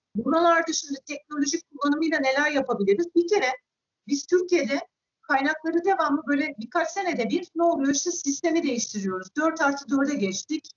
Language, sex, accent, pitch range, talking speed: Turkish, female, native, 265-335 Hz, 135 wpm